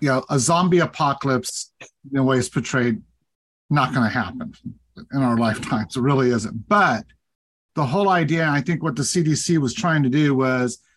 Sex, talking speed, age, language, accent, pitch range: male, 180 wpm, 50-69, English, American, 130-155 Hz